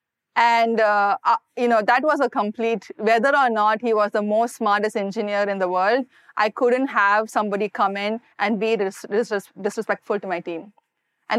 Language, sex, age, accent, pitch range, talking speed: English, female, 30-49, Indian, 205-245 Hz, 190 wpm